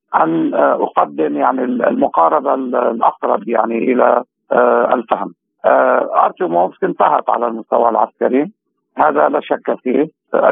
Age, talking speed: 50-69, 95 wpm